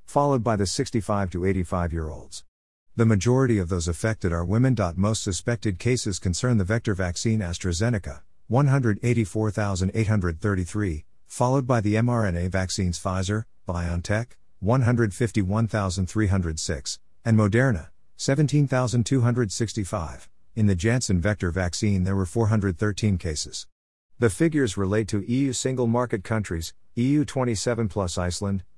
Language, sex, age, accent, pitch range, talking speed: English, male, 50-69, American, 90-115 Hz, 115 wpm